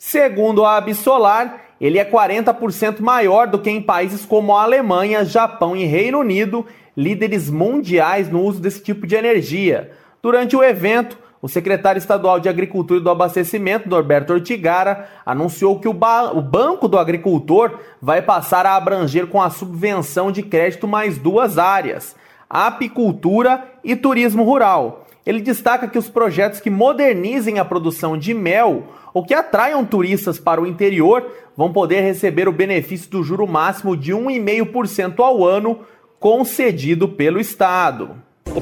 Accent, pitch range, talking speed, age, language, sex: Brazilian, 165-215 Hz, 150 wpm, 30-49, Portuguese, male